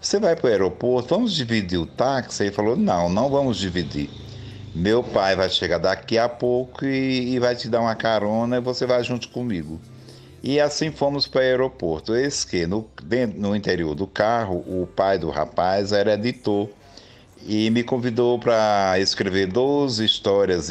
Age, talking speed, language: 60-79, 175 wpm, Portuguese